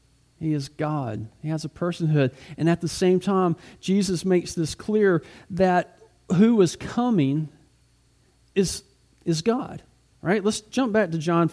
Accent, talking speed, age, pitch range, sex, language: American, 155 wpm, 40-59, 135-185 Hz, male, English